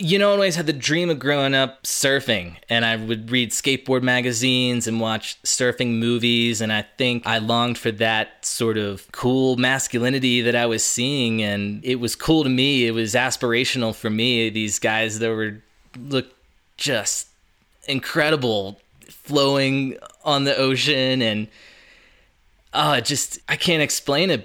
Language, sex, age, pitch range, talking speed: English, male, 20-39, 105-130 Hz, 160 wpm